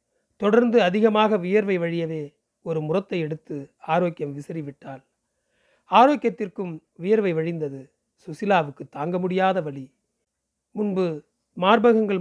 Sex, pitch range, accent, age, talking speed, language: male, 160-210 Hz, native, 40-59, 90 wpm, Tamil